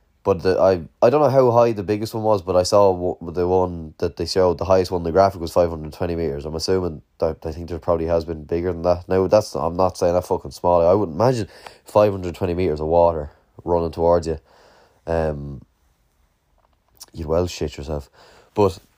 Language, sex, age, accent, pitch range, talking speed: English, male, 20-39, Irish, 85-100 Hz, 210 wpm